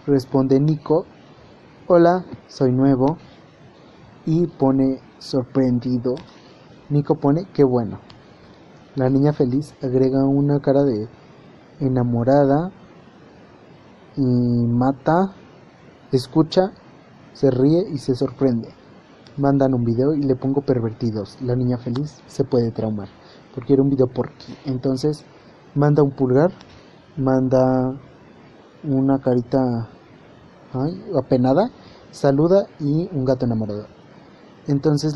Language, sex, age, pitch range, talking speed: Spanish, male, 30-49, 130-155 Hz, 105 wpm